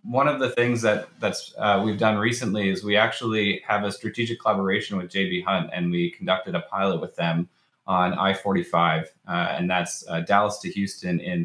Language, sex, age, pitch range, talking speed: English, male, 20-39, 90-110 Hz, 185 wpm